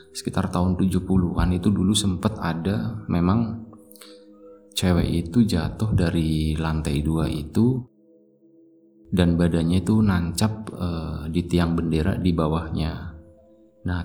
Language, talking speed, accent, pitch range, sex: Indonesian, 110 wpm, native, 80-100 Hz, male